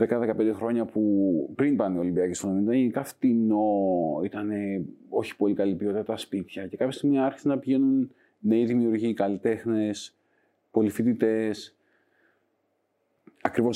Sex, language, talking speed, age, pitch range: male, Greek, 120 wpm, 30-49, 100-120 Hz